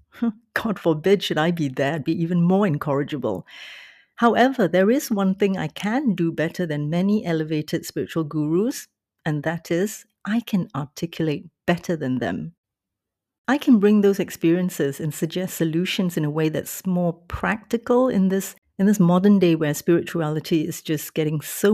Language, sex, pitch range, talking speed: English, female, 160-205 Hz, 165 wpm